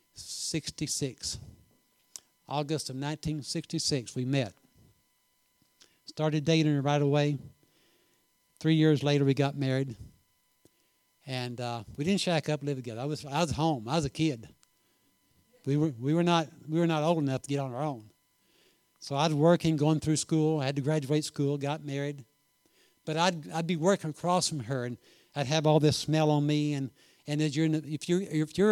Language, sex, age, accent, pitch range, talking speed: English, male, 60-79, American, 135-160 Hz, 175 wpm